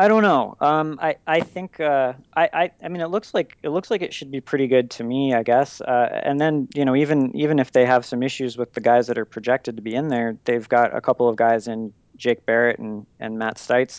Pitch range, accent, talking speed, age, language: 115-140 Hz, American, 265 wpm, 20-39, English